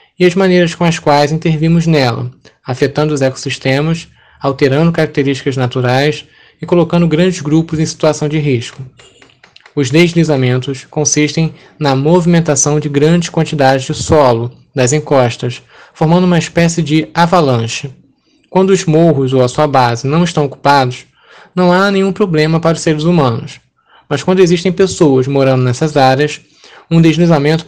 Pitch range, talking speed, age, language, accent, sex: 135-165 Hz, 145 wpm, 20-39, Portuguese, Brazilian, male